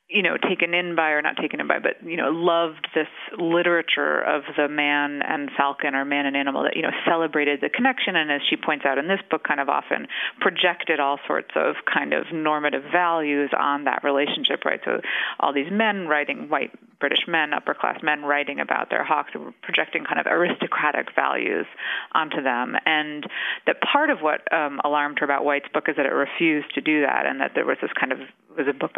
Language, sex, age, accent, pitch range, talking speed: English, female, 30-49, American, 145-165 Hz, 215 wpm